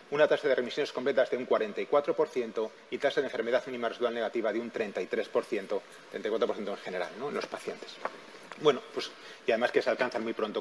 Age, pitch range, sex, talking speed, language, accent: 30-49, 140-220 Hz, male, 190 wpm, Spanish, Spanish